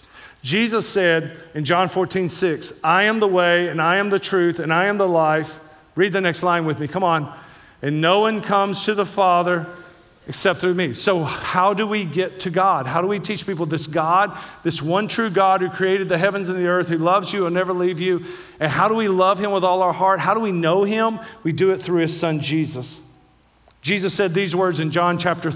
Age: 40-59